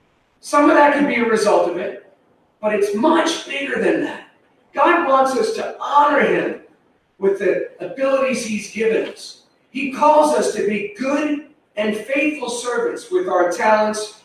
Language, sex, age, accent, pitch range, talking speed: English, male, 40-59, American, 200-315 Hz, 165 wpm